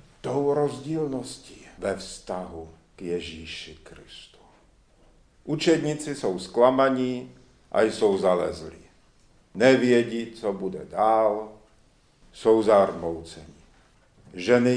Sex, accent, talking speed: male, native, 80 wpm